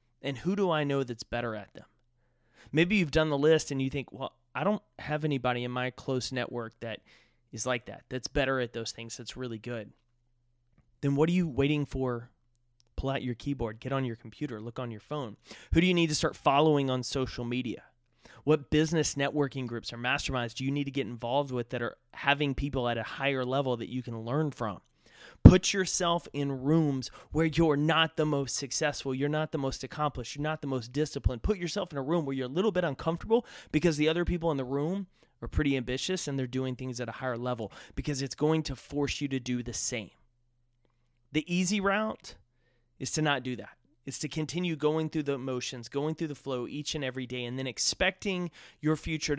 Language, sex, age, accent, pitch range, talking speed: English, male, 30-49, American, 120-155 Hz, 215 wpm